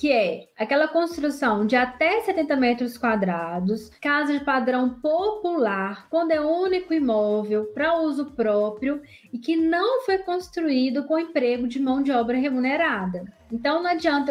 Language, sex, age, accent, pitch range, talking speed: Portuguese, female, 10-29, Brazilian, 235-305 Hz, 145 wpm